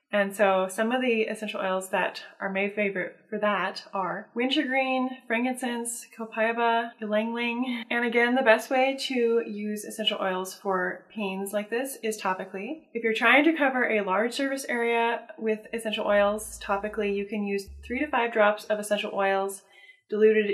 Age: 20-39